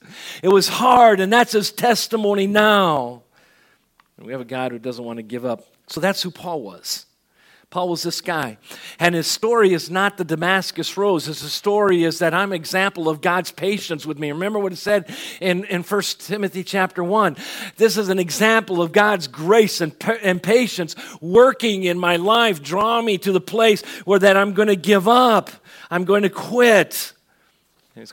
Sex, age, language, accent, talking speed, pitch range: male, 50-69, English, American, 190 wpm, 130-195 Hz